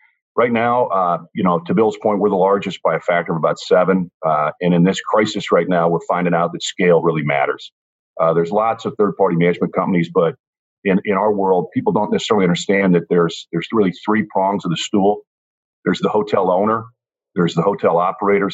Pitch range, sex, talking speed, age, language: 85-100 Hz, male, 205 wpm, 50-69, English